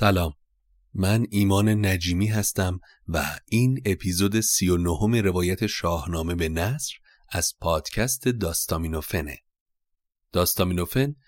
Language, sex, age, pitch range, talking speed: Persian, male, 30-49, 90-105 Hz, 95 wpm